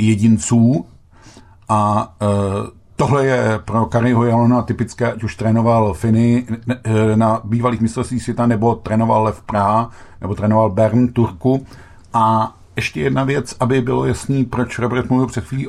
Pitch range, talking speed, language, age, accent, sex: 105-120 Hz, 140 wpm, Czech, 50-69, native, male